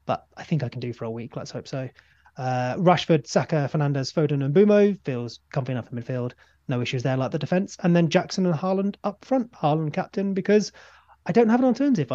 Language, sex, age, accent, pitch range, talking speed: English, male, 30-49, British, 130-170 Hz, 220 wpm